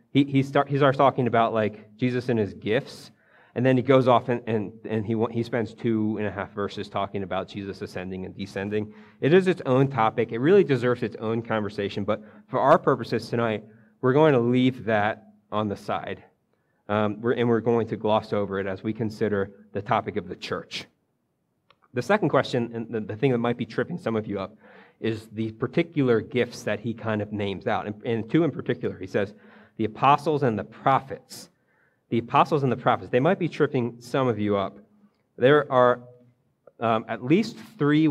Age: 30-49